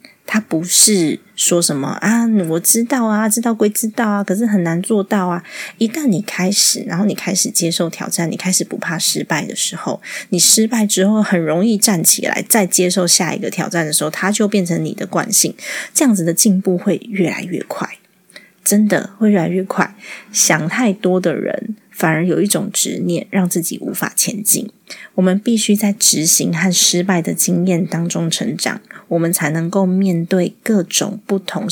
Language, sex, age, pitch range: Chinese, female, 20-39, 175-215 Hz